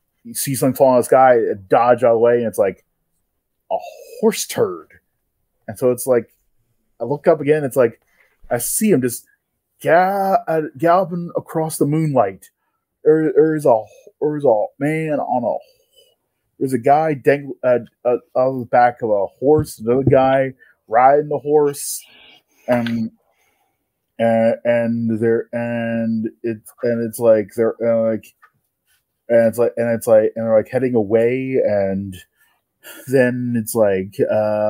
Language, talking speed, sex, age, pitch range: English, 155 wpm, male, 20-39, 115-150 Hz